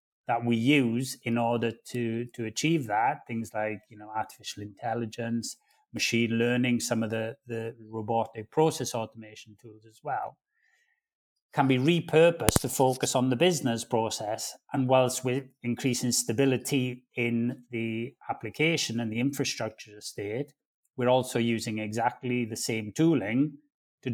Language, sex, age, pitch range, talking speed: English, male, 30-49, 110-130 Hz, 140 wpm